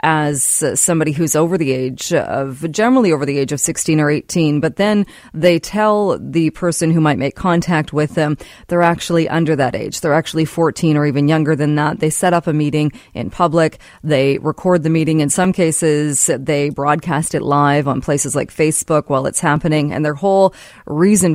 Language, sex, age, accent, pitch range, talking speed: English, female, 30-49, American, 145-175 Hz, 195 wpm